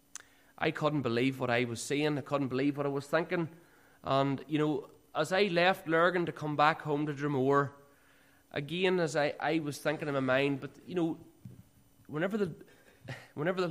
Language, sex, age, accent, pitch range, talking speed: English, male, 30-49, Irish, 115-140 Hz, 190 wpm